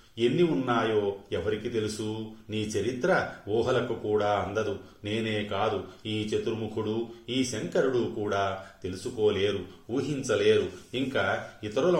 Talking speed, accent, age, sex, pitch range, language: 100 wpm, native, 30-49, male, 100-120 Hz, Telugu